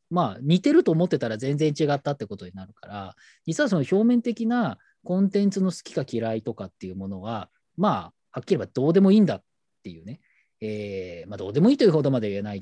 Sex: male